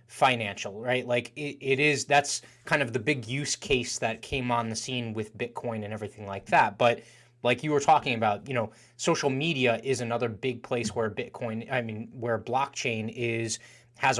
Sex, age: male, 20-39